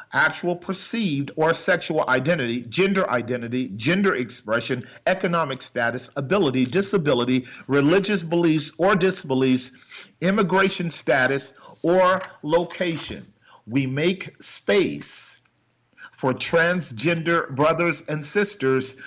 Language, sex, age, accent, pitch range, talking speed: English, male, 40-59, American, 140-180 Hz, 90 wpm